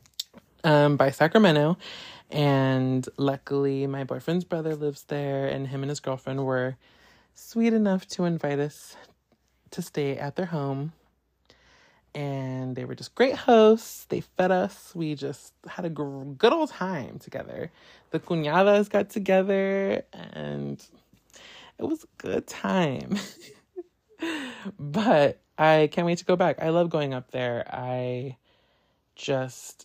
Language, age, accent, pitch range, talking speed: English, 20-39, American, 135-185 Hz, 135 wpm